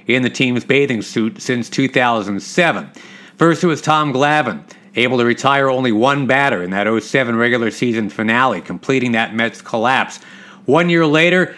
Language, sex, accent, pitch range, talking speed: English, male, American, 115-160 Hz, 160 wpm